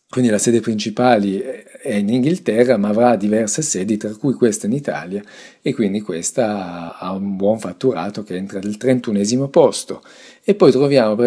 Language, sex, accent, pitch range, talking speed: Italian, male, native, 100-125 Hz, 170 wpm